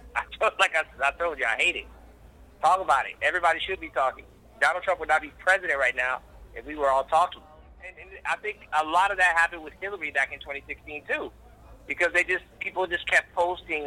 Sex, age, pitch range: male, 30-49, 130-175 Hz